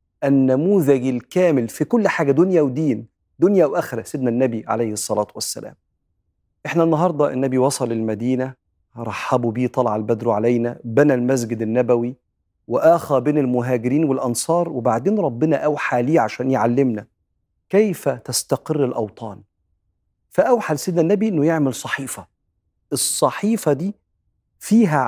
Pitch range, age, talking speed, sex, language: 120-160 Hz, 40-59, 115 wpm, male, Arabic